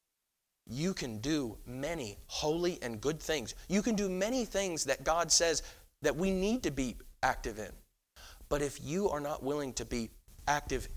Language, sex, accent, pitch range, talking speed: English, male, American, 125-175 Hz, 175 wpm